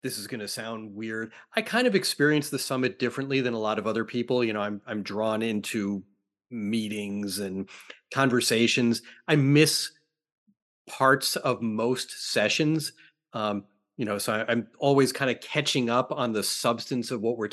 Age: 30-49